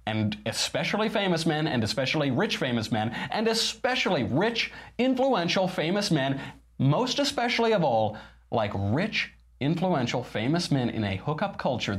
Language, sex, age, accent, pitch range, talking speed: English, male, 30-49, American, 105-170 Hz, 140 wpm